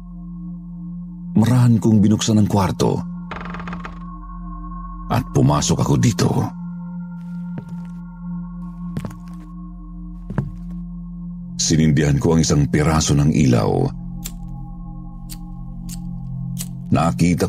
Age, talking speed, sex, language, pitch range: 50-69, 60 wpm, male, Filipino, 105-175 Hz